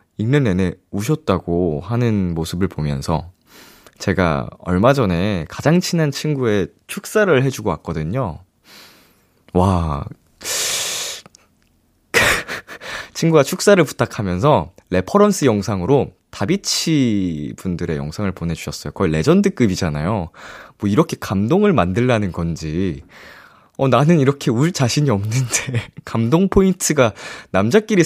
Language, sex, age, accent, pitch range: Korean, male, 20-39, native, 95-145 Hz